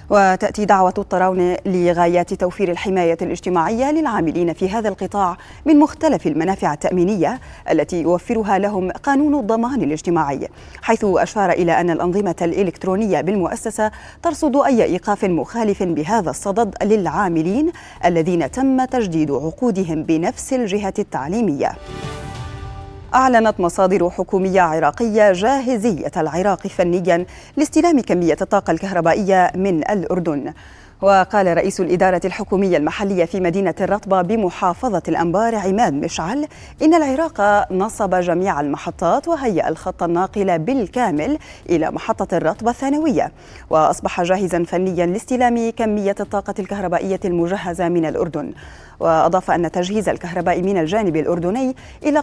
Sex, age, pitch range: female, 30-49, 175-225 Hz